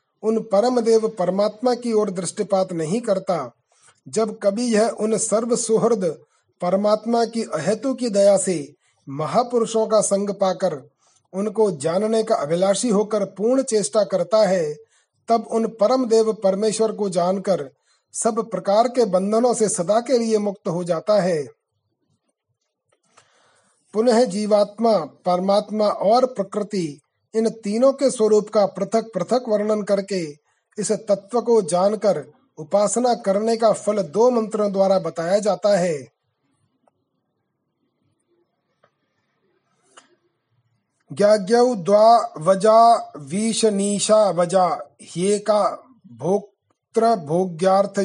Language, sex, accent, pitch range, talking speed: Hindi, male, native, 185-220 Hz, 110 wpm